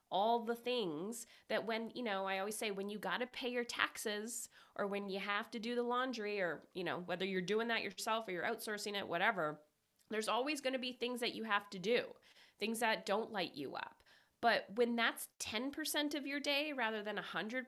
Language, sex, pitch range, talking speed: English, female, 190-245 Hz, 225 wpm